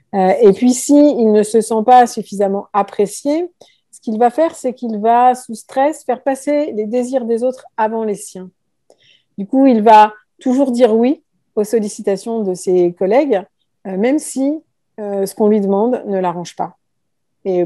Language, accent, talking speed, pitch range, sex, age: French, French, 170 wpm, 200-245 Hz, female, 50-69